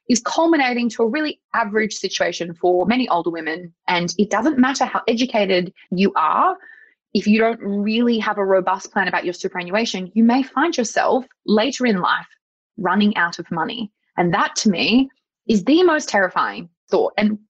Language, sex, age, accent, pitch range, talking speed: English, female, 20-39, Australian, 195-280 Hz, 175 wpm